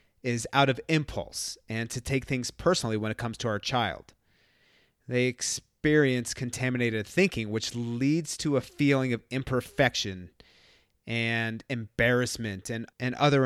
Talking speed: 140 wpm